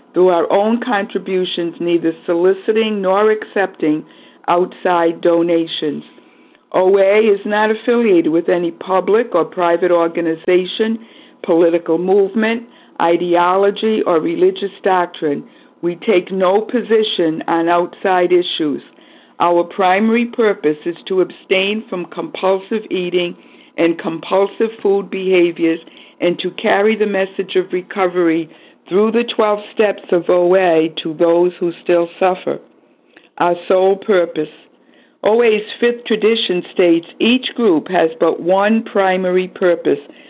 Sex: female